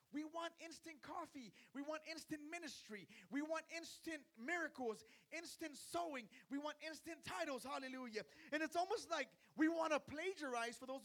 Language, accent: English, American